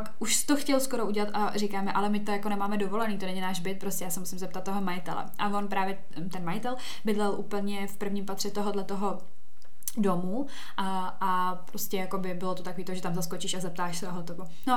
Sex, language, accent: female, Czech, native